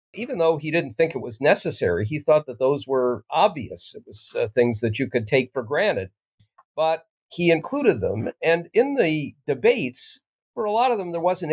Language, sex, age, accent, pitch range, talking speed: English, male, 50-69, American, 125-170 Hz, 205 wpm